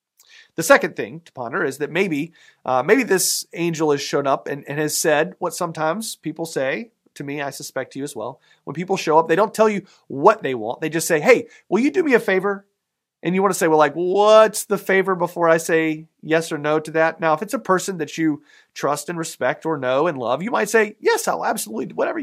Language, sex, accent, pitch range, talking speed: English, male, American, 140-195 Hz, 250 wpm